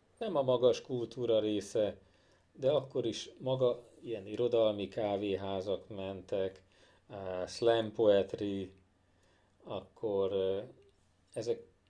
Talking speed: 85 wpm